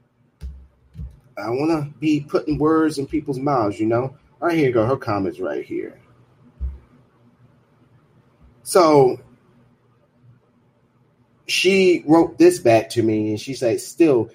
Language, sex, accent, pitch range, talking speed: English, male, American, 115-140 Hz, 130 wpm